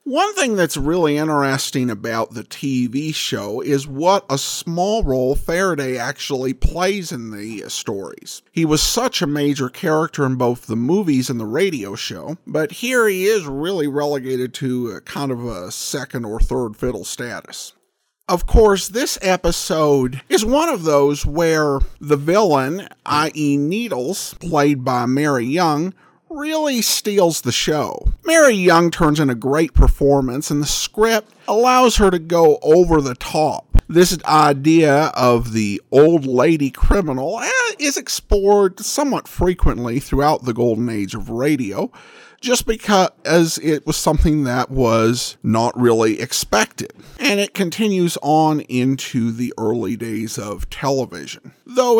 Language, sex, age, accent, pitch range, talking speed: English, male, 50-69, American, 130-185 Hz, 145 wpm